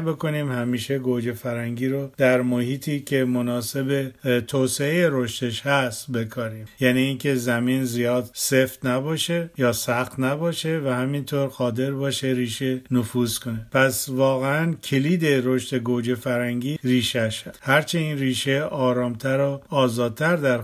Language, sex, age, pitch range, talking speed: Persian, male, 50-69, 125-140 Hz, 130 wpm